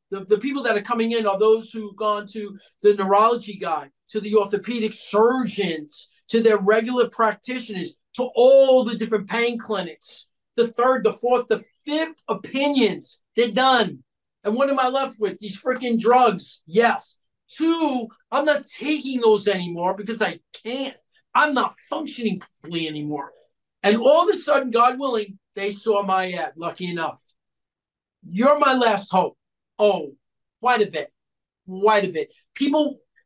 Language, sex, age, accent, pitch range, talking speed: English, male, 50-69, American, 200-250 Hz, 155 wpm